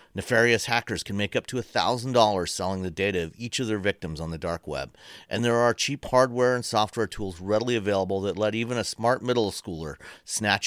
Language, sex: English, male